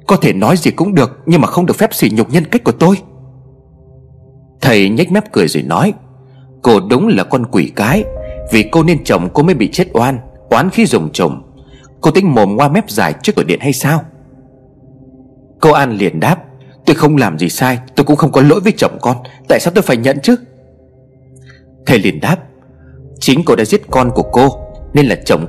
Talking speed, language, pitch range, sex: 210 wpm, Vietnamese, 130-170 Hz, male